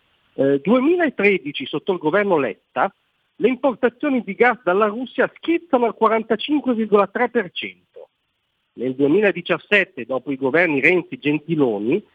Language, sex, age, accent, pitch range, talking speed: Italian, male, 50-69, native, 135-210 Hz, 115 wpm